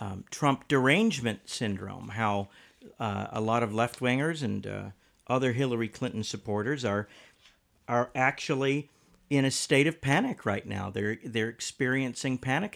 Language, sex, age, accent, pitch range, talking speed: English, male, 50-69, American, 110-135 Hz, 145 wpm